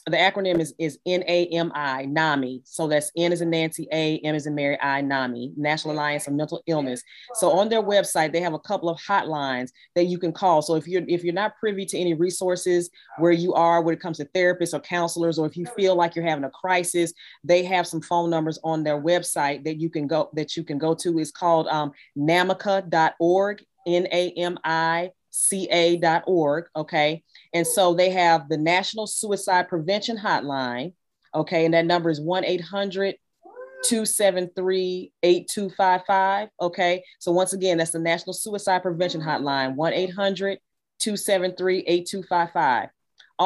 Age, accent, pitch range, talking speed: 30-49, American, 160-190 Hz, 160 wpm